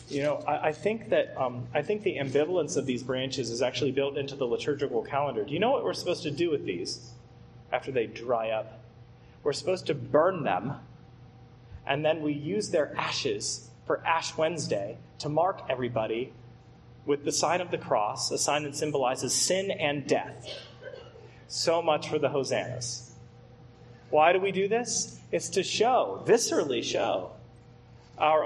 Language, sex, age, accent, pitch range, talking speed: English, male, 30-49, American, 125-180 Hz, 170 wpm